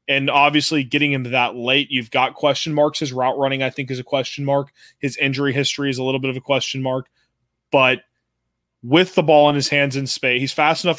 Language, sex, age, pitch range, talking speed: English, male, 20-39, 130-150 Hz, 230 wpm